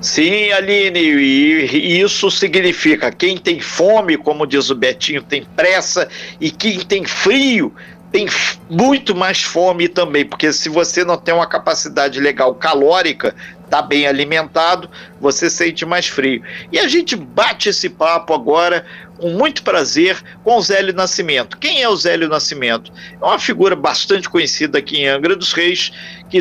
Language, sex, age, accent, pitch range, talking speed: Portuguese, male, 50-69, Brazilian, 160-210 Hz, 160 wpm